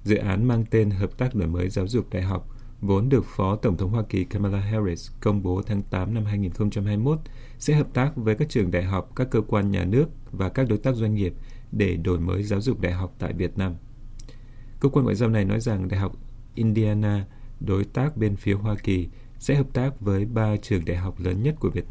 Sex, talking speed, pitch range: male, 230 wpm, 95-120 Hz